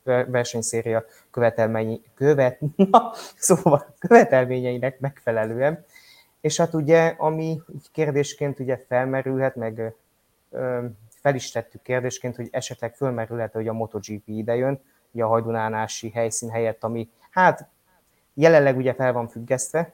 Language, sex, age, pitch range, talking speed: Hungarian, male, 20-39, 115-135 Hz, 110 wpm